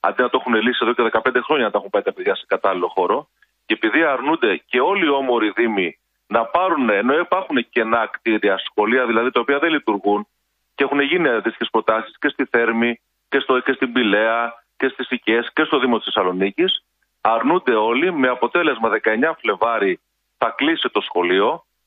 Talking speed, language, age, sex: 190 wpm, Greek, 40-59, male